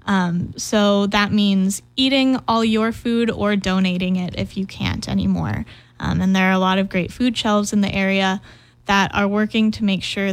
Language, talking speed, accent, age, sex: English, 200 wpm, American, 10-29, female